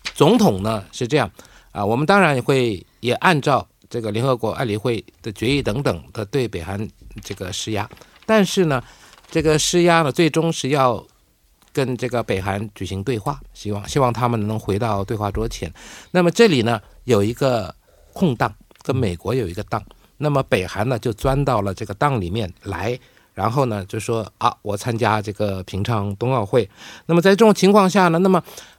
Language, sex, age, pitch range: Korean, male, 50-69, 105-150 Hz